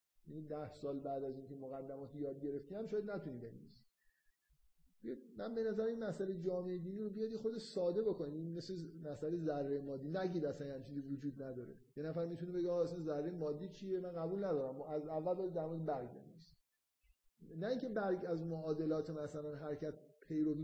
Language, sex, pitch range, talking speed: Persian, male, 150-210 Hz, 170 wpm